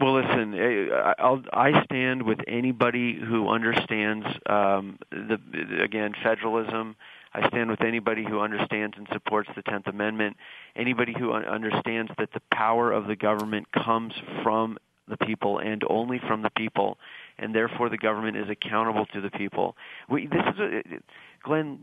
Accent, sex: American, male